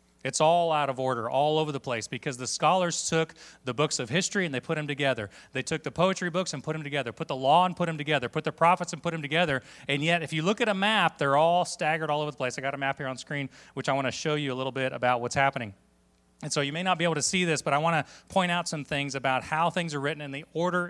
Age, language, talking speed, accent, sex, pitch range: 30-49, English, 300 wpm, American, male, 125-165 Hz